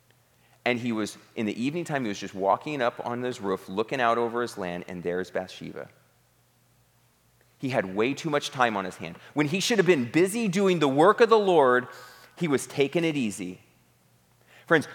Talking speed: 200 wpm